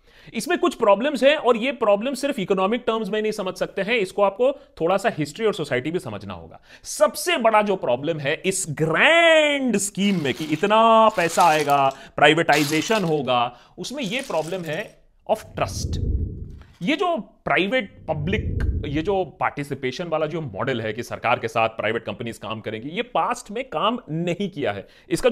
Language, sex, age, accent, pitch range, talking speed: Hindi, male, 30-49, native, 145-235 Hz, 175 wpm